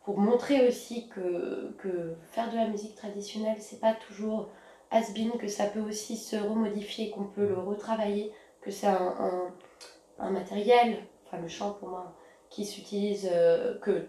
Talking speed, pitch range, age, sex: 170 wpm, 205-235 Hz, 20-39, female